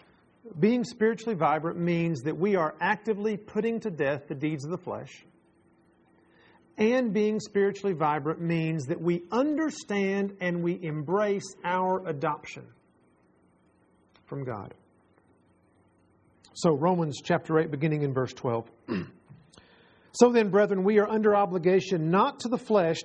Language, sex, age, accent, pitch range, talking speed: English, male, 50-69, American, 160-215 Hz, 130 wpm